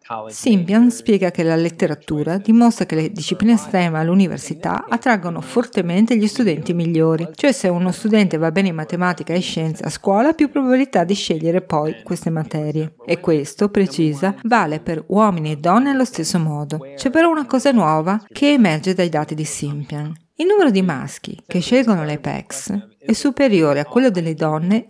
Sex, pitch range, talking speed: female, 160-225 Hz, 175 wpm